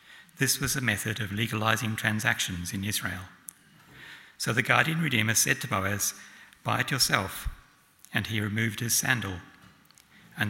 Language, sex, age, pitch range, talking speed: English, male, 60-79, 105-130 Hz, 145 wpm